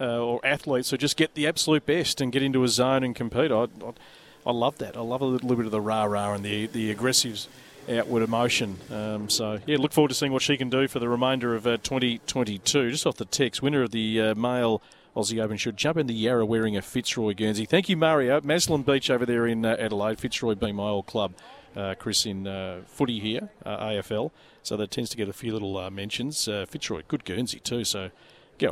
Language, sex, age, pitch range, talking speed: English, male, 40-59, 115-145 Hz, 235 wpm